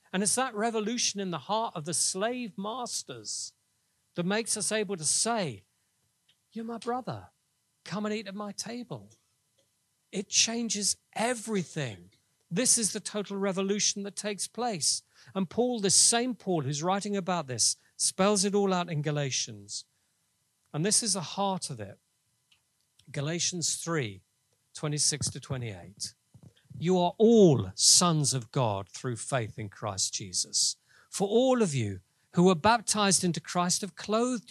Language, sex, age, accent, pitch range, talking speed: English, male, 40-59, British, 145-215 Hz, 150 wpm